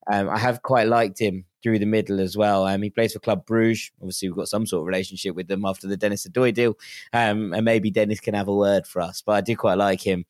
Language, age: English, 20-39